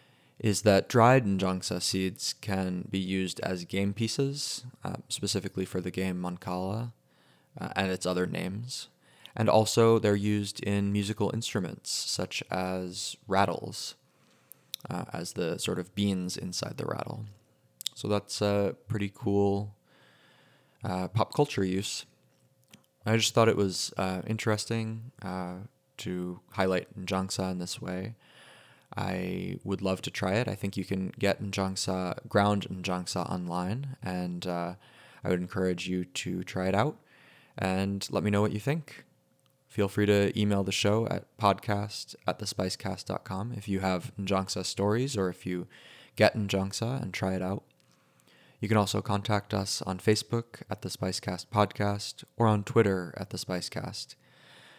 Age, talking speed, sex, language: 20-39, 150 wpm, male, English